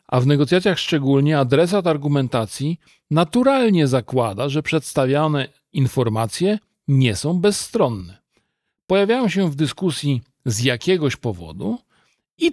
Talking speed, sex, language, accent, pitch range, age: 105 wpm, male, Polish, native, 125-185 Hz, 40-59